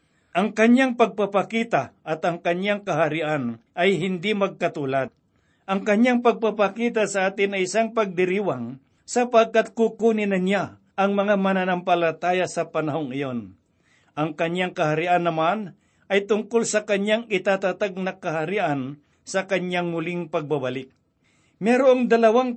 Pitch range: 165-210 Hz